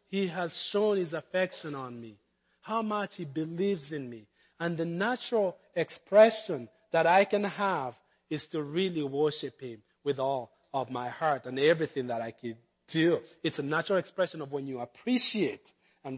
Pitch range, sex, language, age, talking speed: 130-220 Hz, male, English, 40-59, 170 wpm